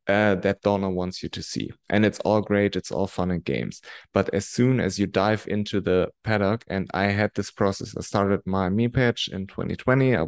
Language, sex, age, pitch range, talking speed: English, male, 20-39, 90-105 Hz, 220 wpm